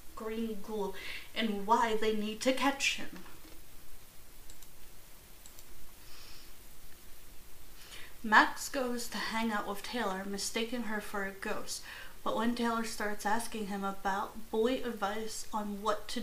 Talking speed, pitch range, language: 120 wpm, 210-245 Hz, English